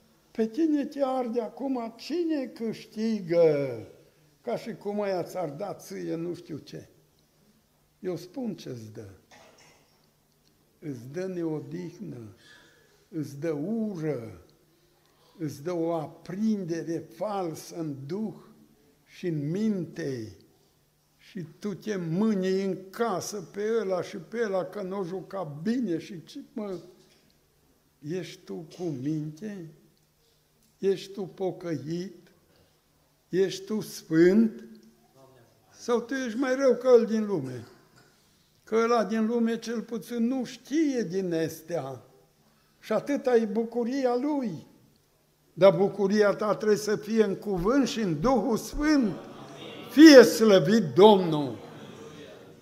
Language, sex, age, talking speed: Romanian, male, 60-79, 115 wpm